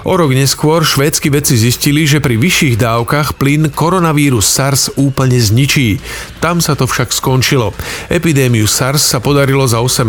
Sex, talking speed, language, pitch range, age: male, 155 wpm, Slovak, 120-150 Hz, 40-59